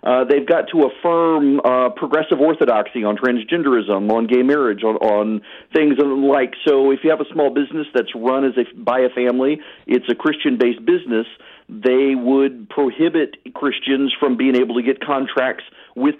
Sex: male